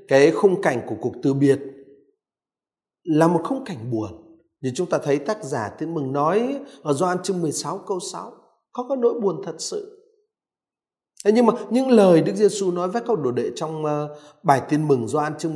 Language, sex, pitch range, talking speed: Vietnamese, male, 150-225 Hz, 195 wpm